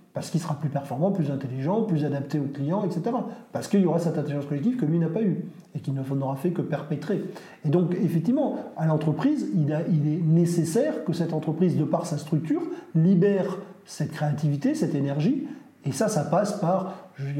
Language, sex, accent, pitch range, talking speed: French, male, French, 150-195 Hz, 205 wpm